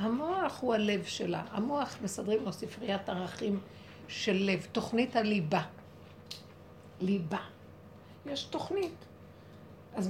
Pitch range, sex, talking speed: 180-240 Hz, female, 100 wpm